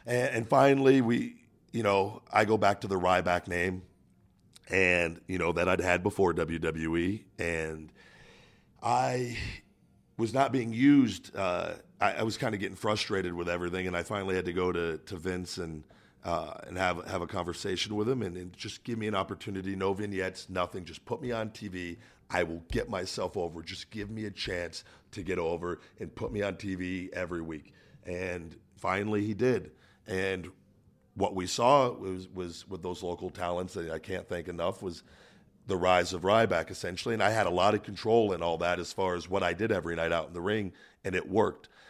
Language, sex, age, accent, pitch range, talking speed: English, male, 40-59, American, 90-105 Hz, 200 wpm